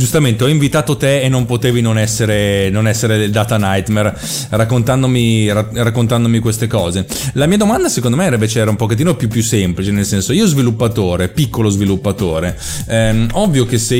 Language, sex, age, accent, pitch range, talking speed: Italian, male, 30-49, native, 100-125 Hz, 170 wpm